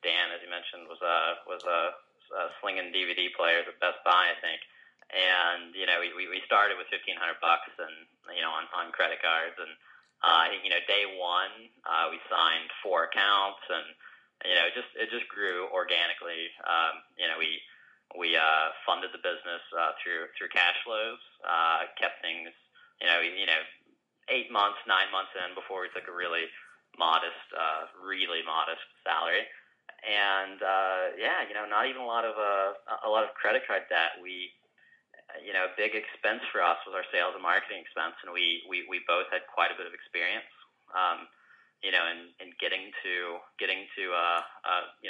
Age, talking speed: 30-49, 190 wpm